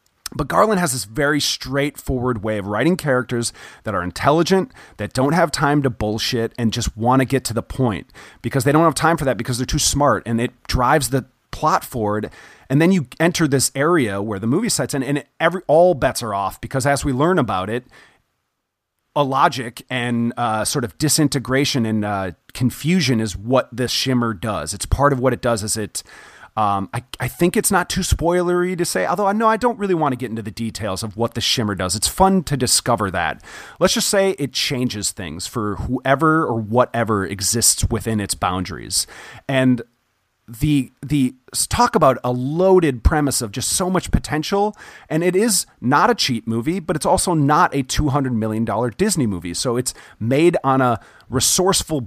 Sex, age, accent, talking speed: male, 30-49, American, 195 wpm